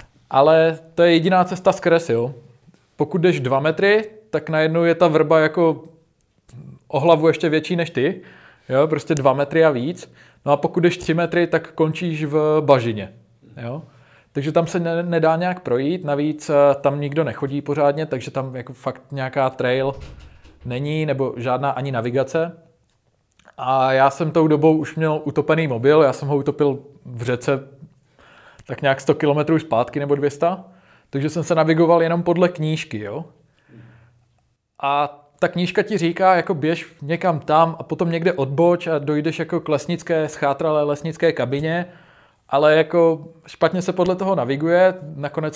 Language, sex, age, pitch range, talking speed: Czech, male, 20-39, 140-165 Hz, 155 wpm